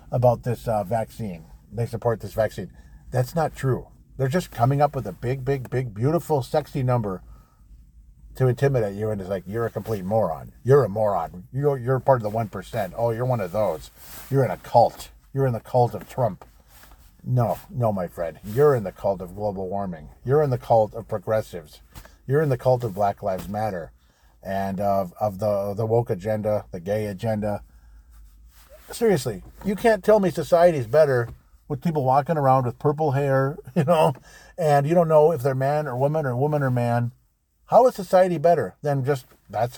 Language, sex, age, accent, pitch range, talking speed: English, male, 50-69, American, 105-140 Hz, 195 wpm